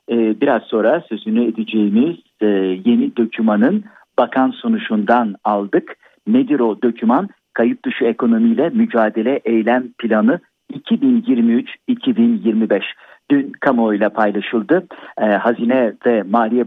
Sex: male